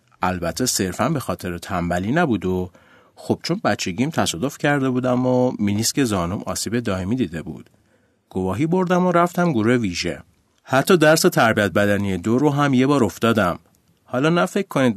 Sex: male